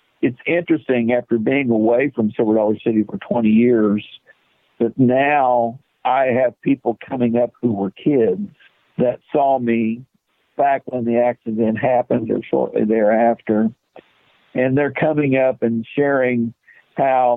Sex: male